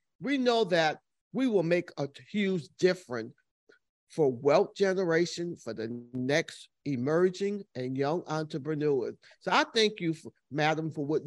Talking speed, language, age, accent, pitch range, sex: 140 wpm, English, 50-69, American, 145-220 Hz, male